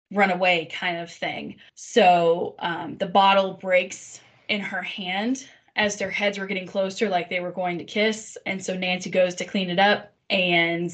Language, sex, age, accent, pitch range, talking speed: English, female, 10-29, American, 180-210 Hz, 180 wpm